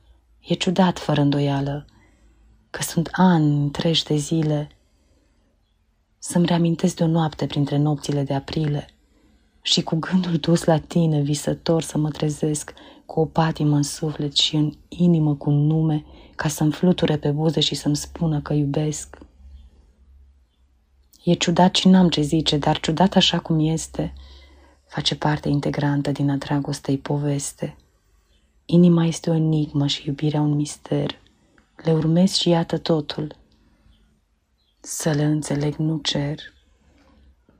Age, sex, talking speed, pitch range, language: 20-39, female, 135 wpm, 140-165 Hz, Romanian